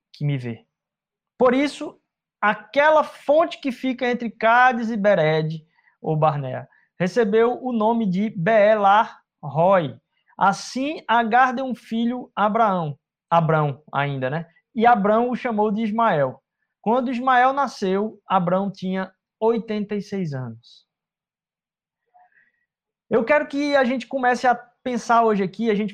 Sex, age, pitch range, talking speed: male, 20-39, 180-230 Hz, 125 wpm